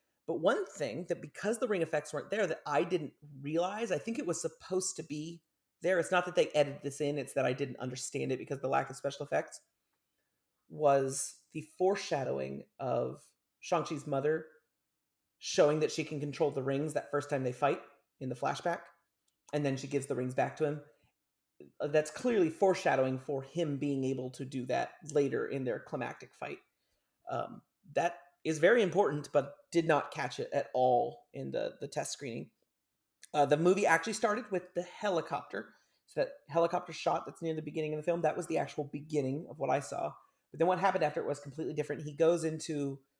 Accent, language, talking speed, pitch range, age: American, English, 200 wpm, 140-175 Hz, 30-49